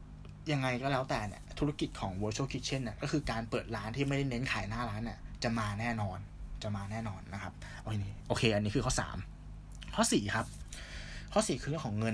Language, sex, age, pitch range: Thai, male, 20-39, 95-130 Hz